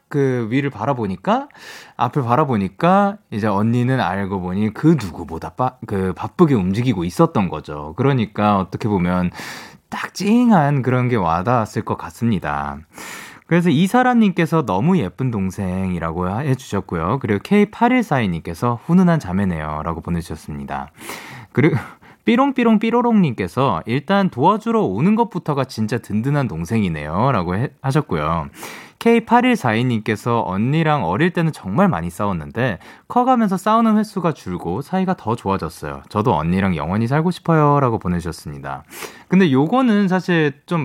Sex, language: male, Korean